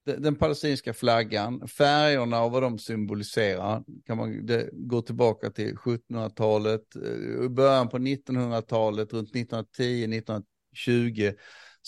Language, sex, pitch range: Swedish, male, 110-145 Hz